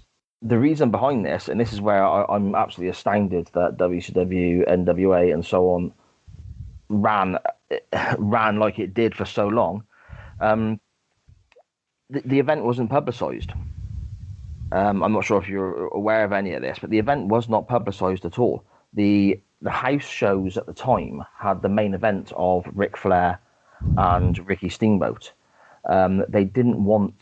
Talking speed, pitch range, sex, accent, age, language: 160 wpm, 95-115 Hz, male, British, 30-49, English